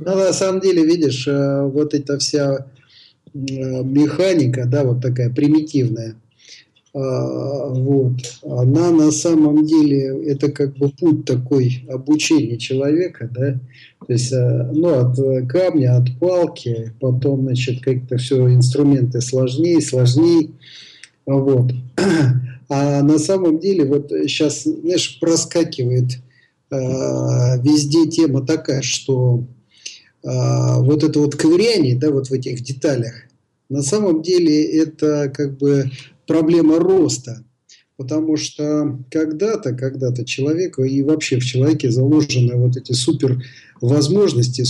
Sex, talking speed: male, 110 wpm